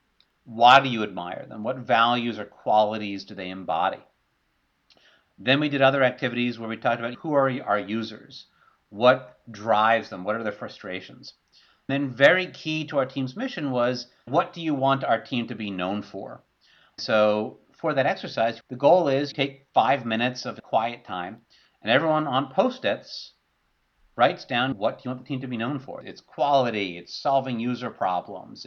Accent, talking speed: American, 180 wpm